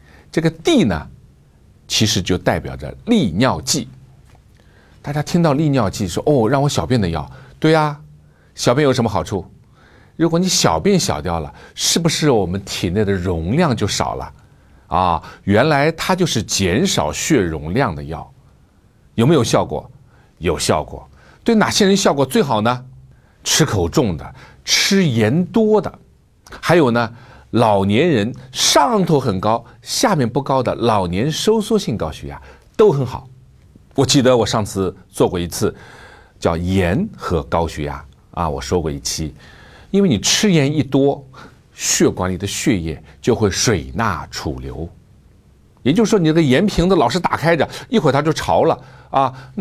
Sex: male